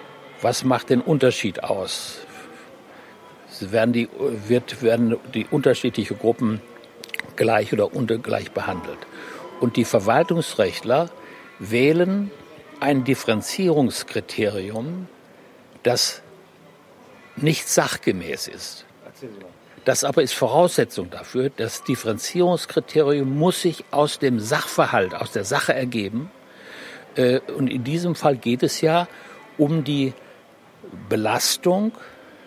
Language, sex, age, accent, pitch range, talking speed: German, male, 60-79, German, 120-160 Hz, 95 wpm